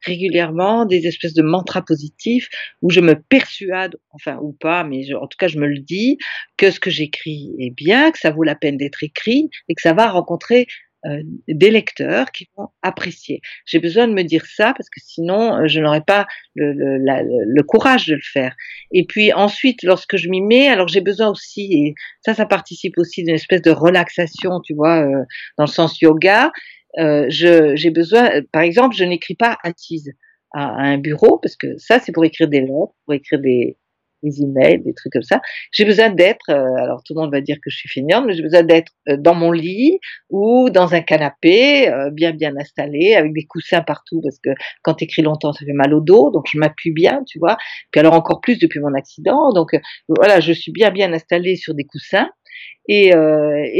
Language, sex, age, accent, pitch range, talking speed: French, female, 50-69, French, 155-210 Hz, 220 wpm